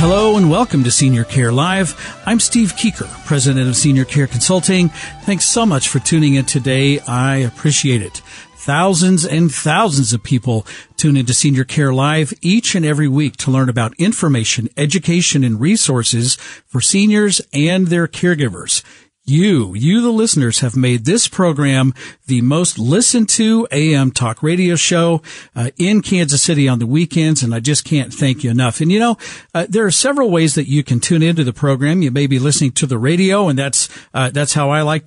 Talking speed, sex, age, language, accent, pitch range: 190 wpm, male, 50-69, English, American, 135-175 Hz